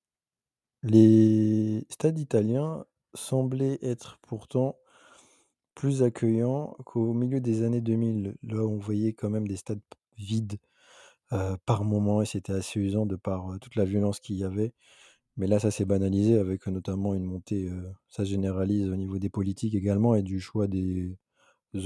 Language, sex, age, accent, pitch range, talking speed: French, male, 20-39, French, 95-110 Hz, 165 wpm